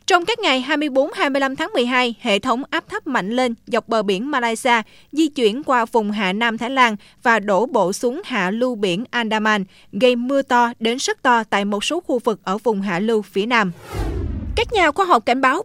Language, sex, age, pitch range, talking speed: Vietnamese, female, 20-39, 220-290 Hz, 210 wpm